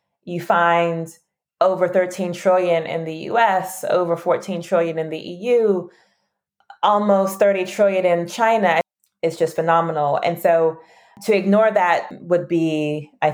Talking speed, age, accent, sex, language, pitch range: 135 wpm, 20-39, American, female, English, 160-185 Hz